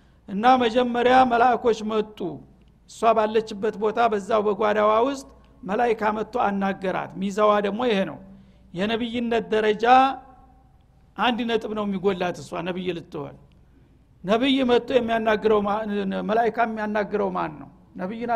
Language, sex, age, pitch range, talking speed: Amharic, male, 60-79, 205-240 Hz, 110 wpm